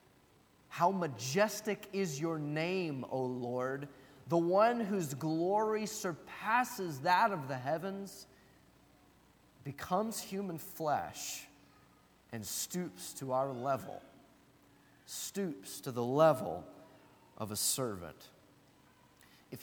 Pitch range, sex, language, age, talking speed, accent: 125-175 Hz, male, English, 30-49, 100 wpm, American